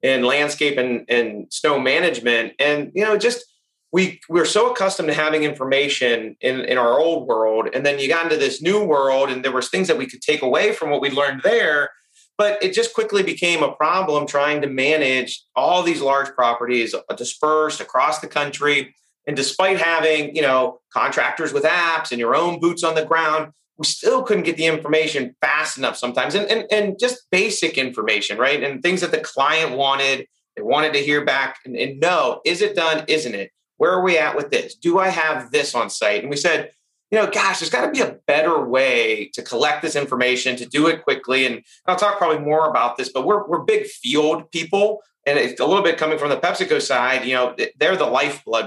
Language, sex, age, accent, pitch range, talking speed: English, male, 30-49, American, 135-190 Hz, 215 wpm